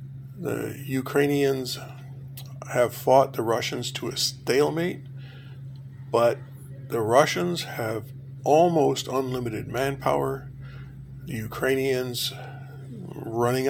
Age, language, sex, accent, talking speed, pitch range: 50-69, English, male, American, 85 wpm, 130-135 Hz